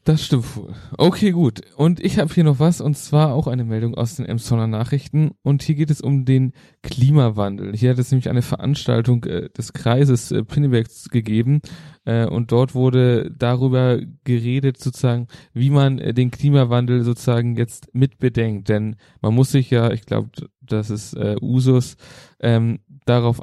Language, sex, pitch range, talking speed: German, male, 110-135 Hz, 170 wpm